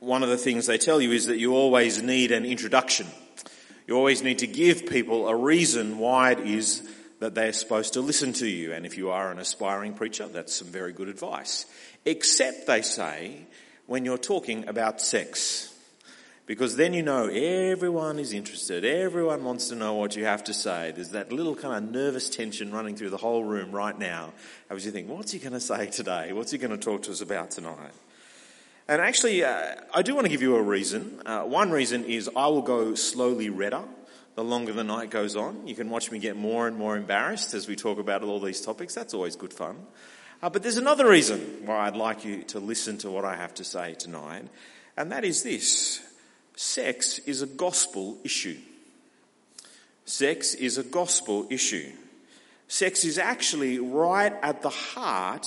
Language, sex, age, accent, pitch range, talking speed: English, male, 40-59, Australian, 105-135 Hz, 200 wpm